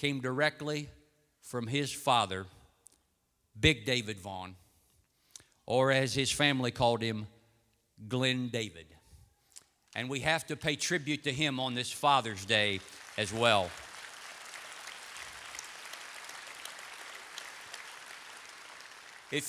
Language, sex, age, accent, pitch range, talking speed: English, male, 50-69, American, 110-150 Hz, 95 wpm